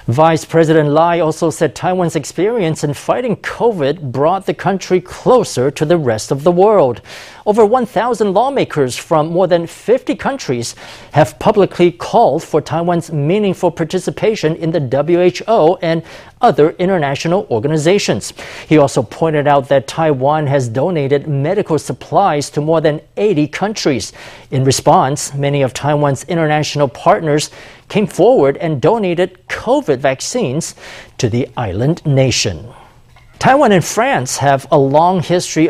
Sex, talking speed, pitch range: male, 135 wpm, 140-180 Hz